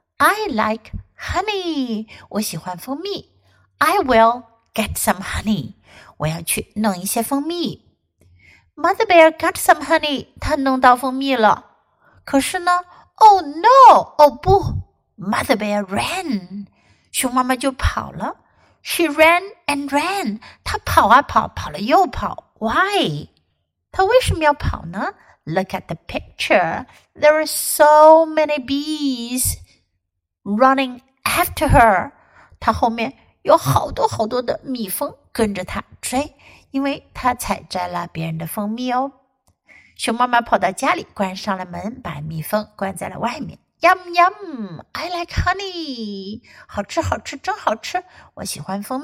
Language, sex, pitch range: Chinese, female, 200-315 Hz